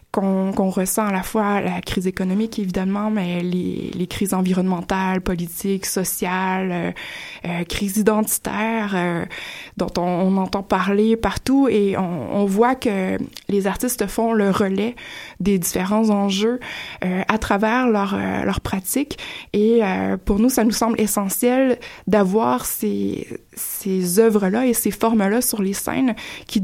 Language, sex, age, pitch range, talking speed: French, female, 20-39, 185-220 Hz, 150 wpm